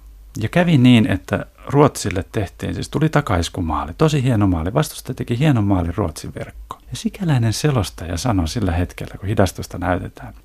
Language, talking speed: Finnish, 155 wpm